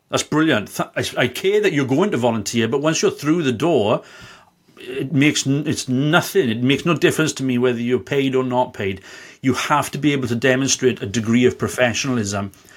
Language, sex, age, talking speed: English, male, 40-59, 195 wpm